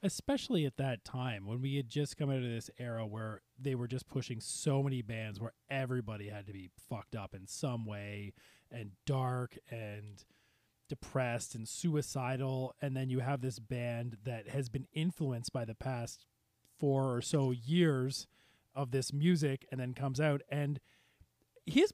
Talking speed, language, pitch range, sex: 170 wpm, English, 120-145 Hz, male